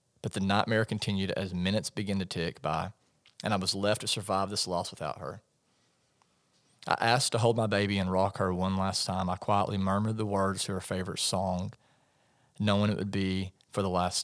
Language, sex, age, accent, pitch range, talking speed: English, male, 30-49, American, 95-110 Hz, 200 wpm